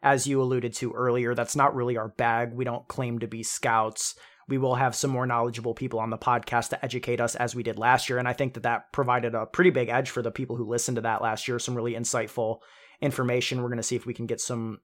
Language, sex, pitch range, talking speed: English, male, 120-135 Hz, 265 wpm